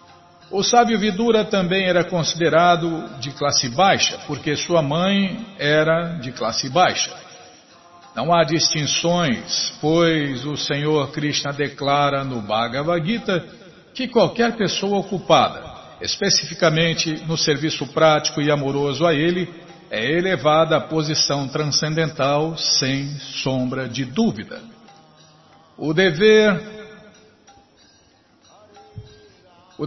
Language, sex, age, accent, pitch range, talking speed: Portuguese, male, 60-79, Brazilian, 145-185 Hz, 100 wpm